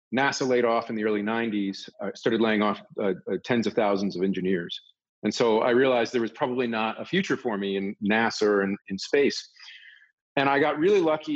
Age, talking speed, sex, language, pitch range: 40-59, 215 wpm, male, English, 105-130 Hz